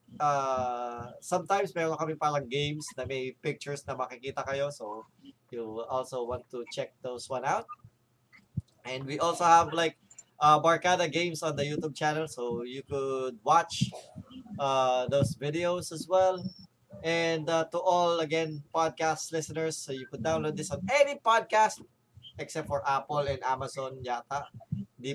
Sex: male